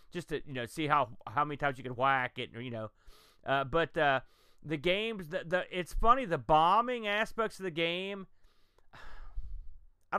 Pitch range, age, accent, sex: 145-190 Hz, 30-49, American, male